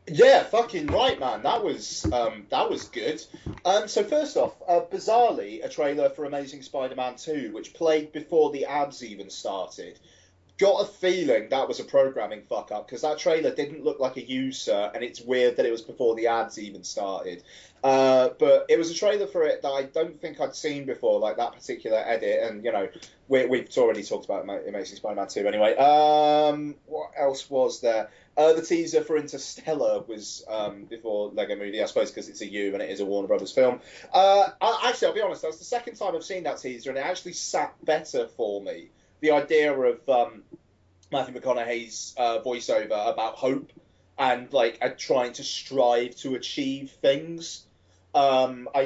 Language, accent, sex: English, British, male